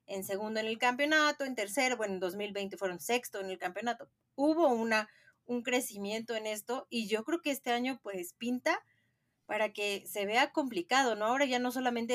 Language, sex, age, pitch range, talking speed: Spanish, female, 30-49, 190-250 Hz, 195 wpm